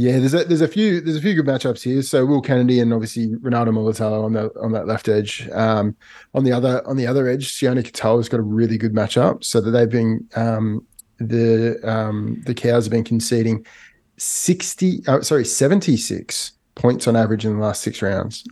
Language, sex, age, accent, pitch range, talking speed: English, male, 30-49, Australian, 110-135 Hz, 210 wpm